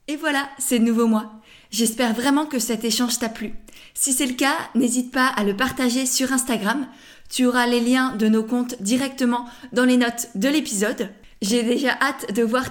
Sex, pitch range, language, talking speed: female, 225-265 Hz, French, 200 wpm